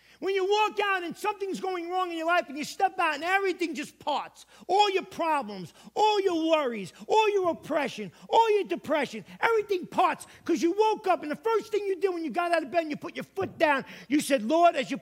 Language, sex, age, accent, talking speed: English, male, 40-59, American, 240 wpm